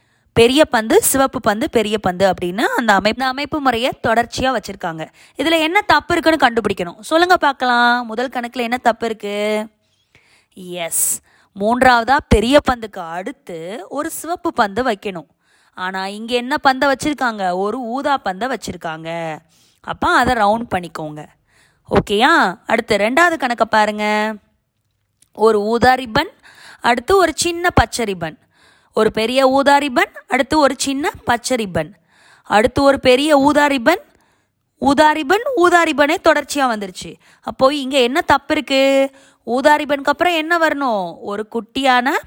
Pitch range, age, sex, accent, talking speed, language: 200-285 Hz, 20-39, female, native, 120 wpm, Tamil